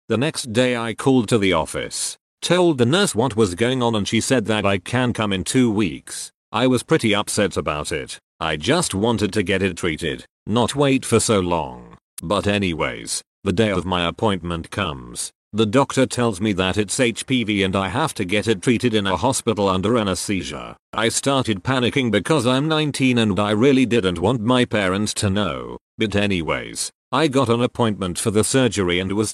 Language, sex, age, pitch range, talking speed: English, male, 40-59, 100-125 Hz, 195 wpm